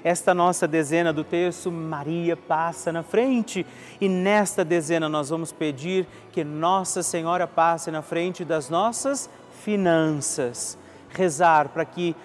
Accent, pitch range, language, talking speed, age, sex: Brazilian, 165-195 Hz, Portuguese, 130 wpm, 40-59, male